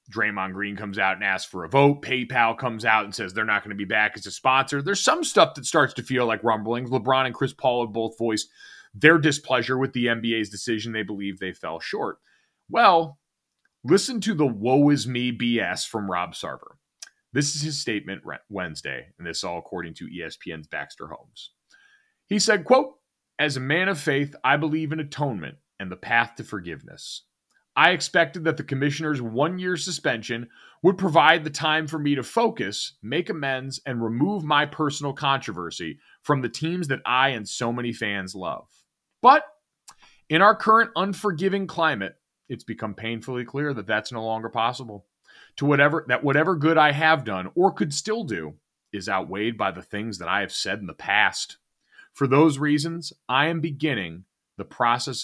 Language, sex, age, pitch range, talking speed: English, male, 30-49, 115-160 Hz, 180 wpm